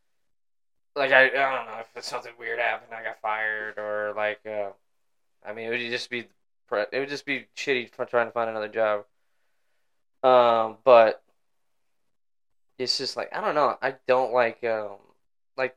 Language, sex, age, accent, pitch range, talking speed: English, male, 10-29, American, 110-130 Hz, 175 wpm